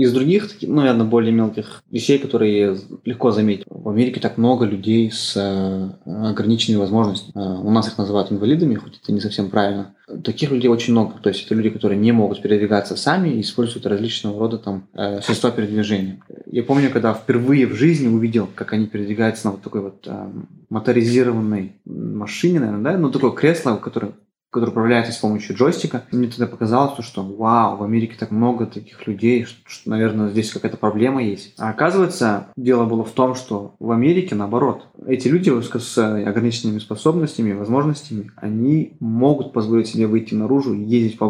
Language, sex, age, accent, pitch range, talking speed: Russian, male, 20-39, native, 105-125 Hz, 170 wpm